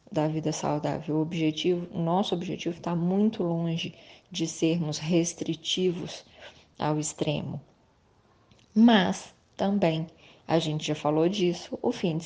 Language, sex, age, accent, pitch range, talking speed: Portuguese, female, 20-39, Brazilian, 165-190 Hz, 125 wpm